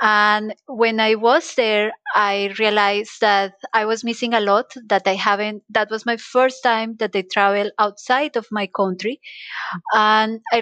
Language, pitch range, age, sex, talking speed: English, 210-255 Hz, 30-49, female, 170 wpm